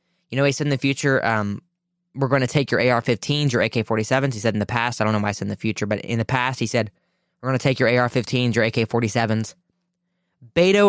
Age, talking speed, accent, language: 20-39, 250 wpm, American, English